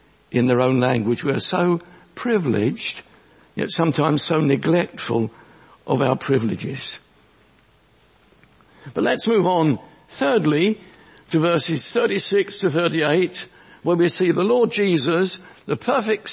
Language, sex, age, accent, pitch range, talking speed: English, male, 60-79, British, 160-215 Hz, 120 wpm